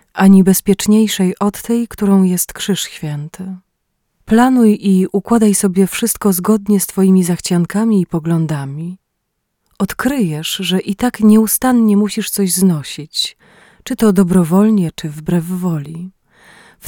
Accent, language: native, Polish